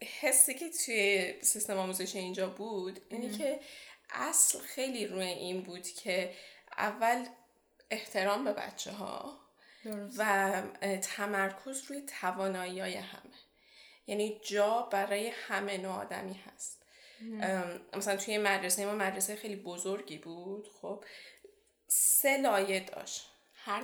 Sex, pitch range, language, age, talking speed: female, 190-230 Hz, Persian, 10-29, 110 wpm